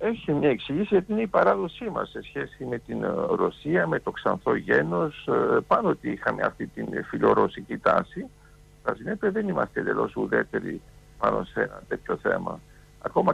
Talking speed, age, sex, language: 155 wpm, 60-79, male, Greek